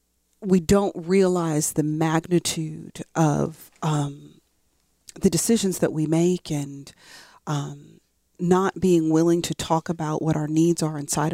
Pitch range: 155-180 Hz